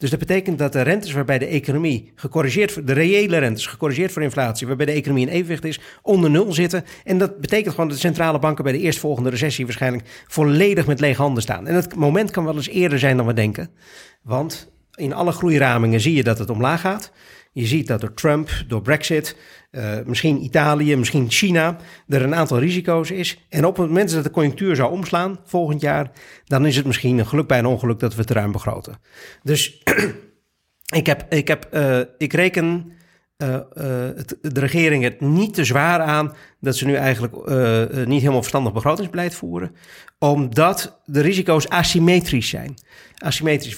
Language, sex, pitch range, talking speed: Dutch, male, 125-165 Hz, 195 wpm